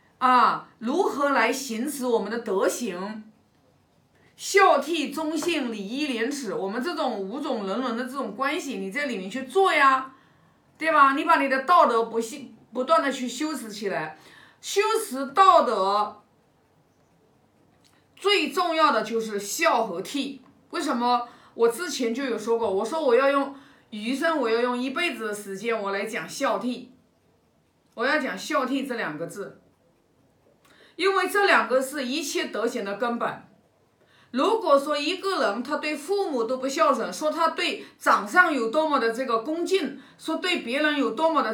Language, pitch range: Chinese, 230-325 Hz